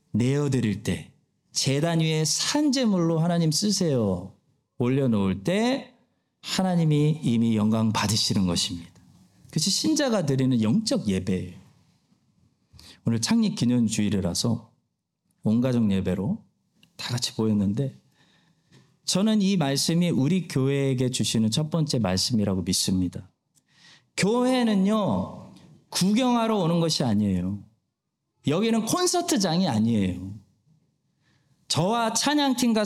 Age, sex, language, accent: 40-59, male, Korean, native